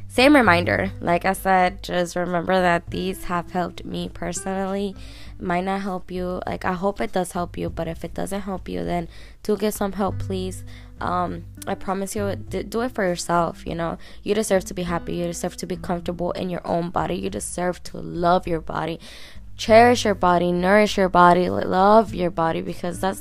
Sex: female